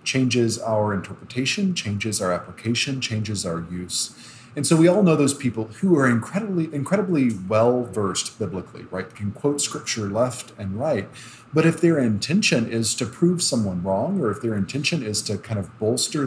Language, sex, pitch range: English, male, 110-145 Hz